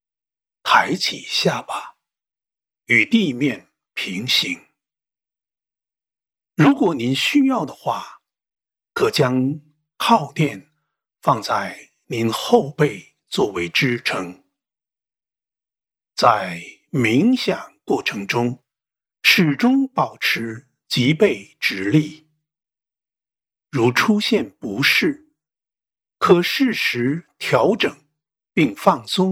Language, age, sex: English, 60-79, male